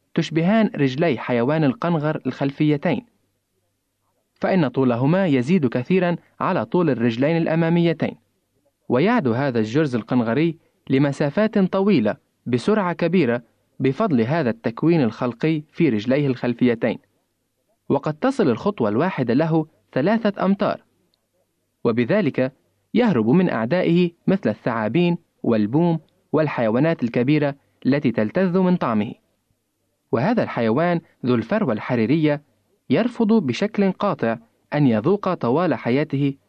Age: 20-39